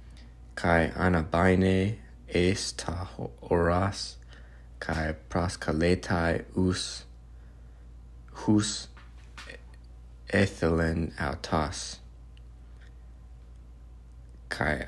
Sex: male